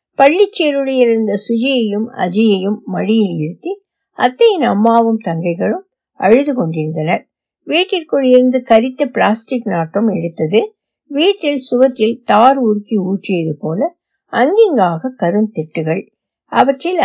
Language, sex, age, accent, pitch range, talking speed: Tamil, female, 60-79, native, 205-280 Hz, 50 wpm